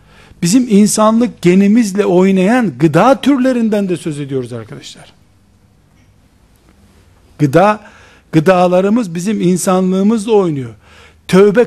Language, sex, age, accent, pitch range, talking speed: Turkish, male, 60-79, native, 160-225 Hz, 80 wpm